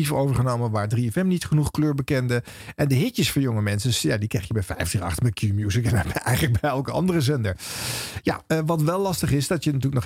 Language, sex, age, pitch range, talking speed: Dutch, male, 50-69, 110-155 Hz, 220 wpm